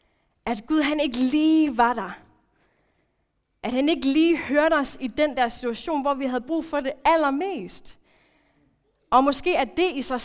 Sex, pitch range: female, 230-290 Hz